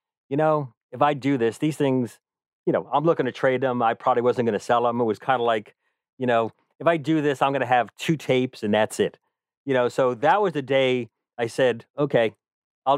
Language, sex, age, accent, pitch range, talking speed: English, male, 40-59, American, 115-145 Hz, 245 wpm